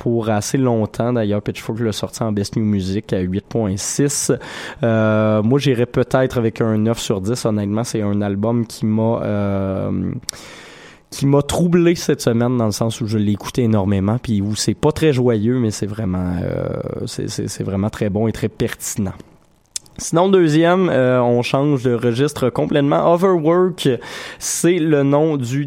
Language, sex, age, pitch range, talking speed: French, male, 20-39, 115-145 Hz, 175 wpm